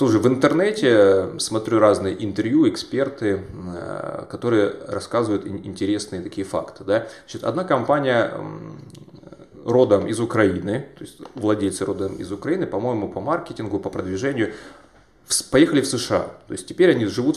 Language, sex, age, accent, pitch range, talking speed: Russian, male, 20-39, native, 100-150 Hz, 130 wpm